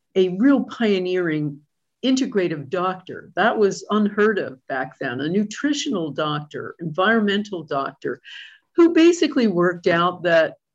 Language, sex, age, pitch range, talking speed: English, female, 50-69, 155-215 Hz, 115 wpm